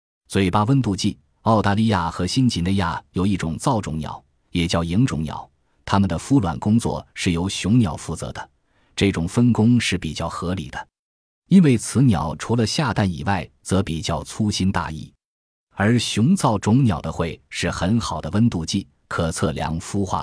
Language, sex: Chinese, male